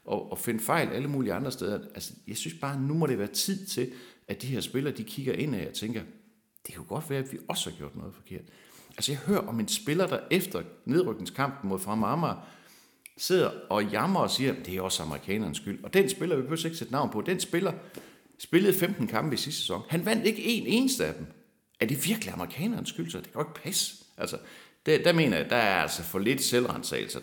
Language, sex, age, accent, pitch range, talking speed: Danish, male, 60-79, native, 110-170 Hz, 240 wpm